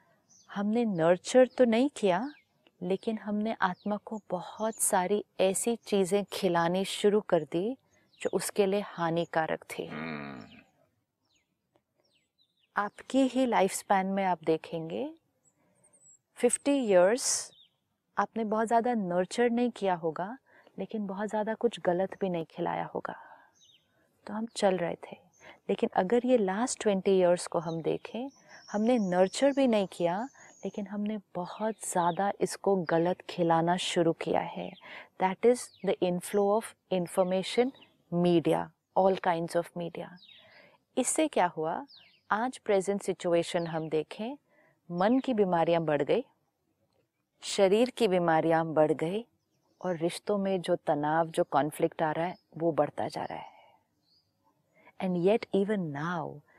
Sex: female